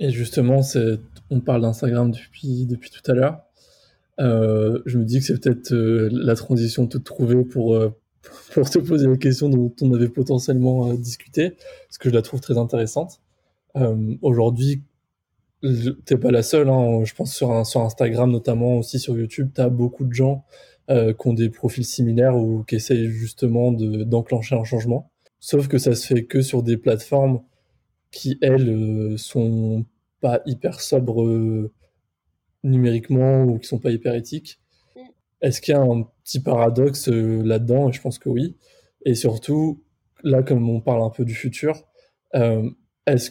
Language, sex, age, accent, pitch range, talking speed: French, male, 20-39, French, 115-130 Hz, 175 wpm